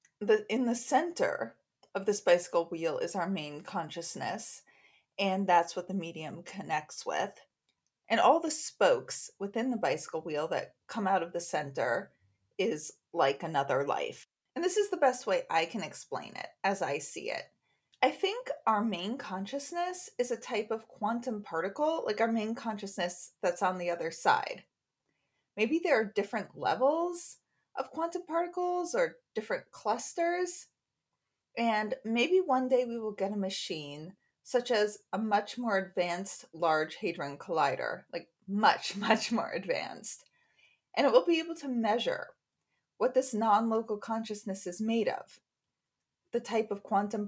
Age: 30-49